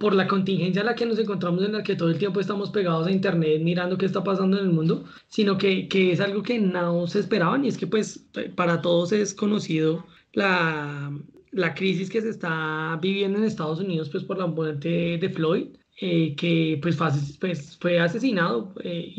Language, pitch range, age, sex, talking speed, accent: Spanish, 170-215 Hz, 20-39, male, 200 wpm, Colombian